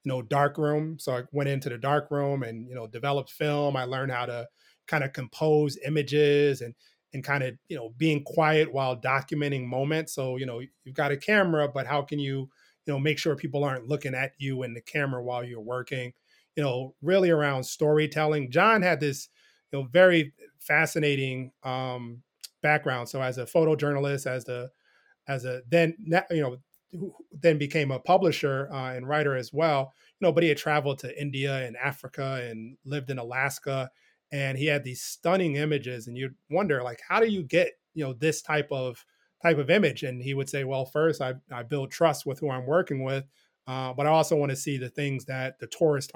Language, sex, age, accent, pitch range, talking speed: English, male, 30-49, American, 130-150 Hz, 205 wpm